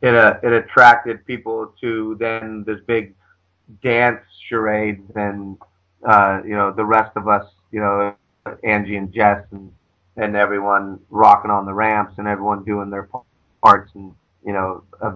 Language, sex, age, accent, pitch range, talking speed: English, male, 30-49, American, 95-110 Hz, 160 wpm